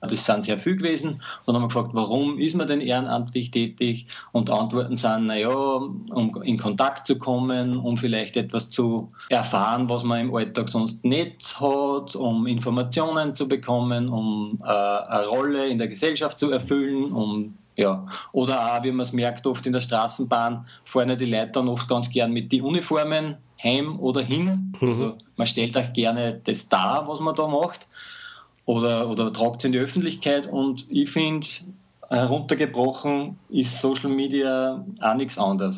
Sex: male